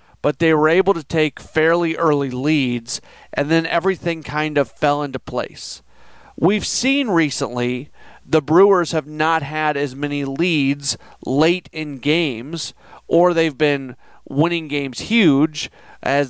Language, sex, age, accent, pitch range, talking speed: English, male, 40-59, American, 140-170 Hz, 140 wpm